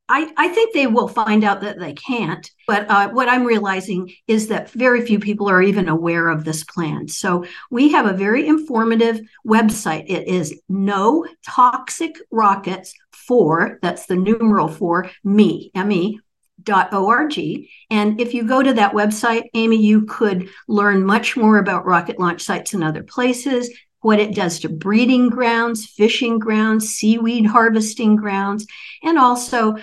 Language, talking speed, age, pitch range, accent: English, 160 wpm, 50-69, 190-230 Hz, American